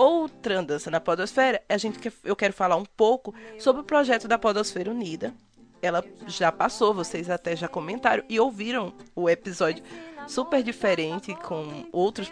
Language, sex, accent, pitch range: Portuguese, female, Brazilian, 180-250 Hz